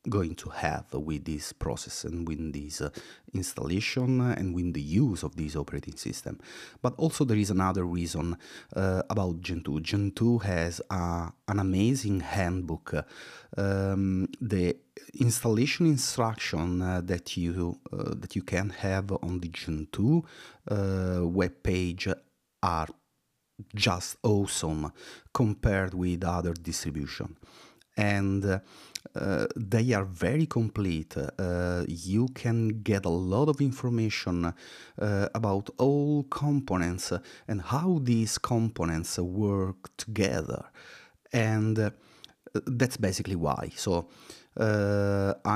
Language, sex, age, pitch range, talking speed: English, male, 30-49, 85-115 Hz, 120 wpm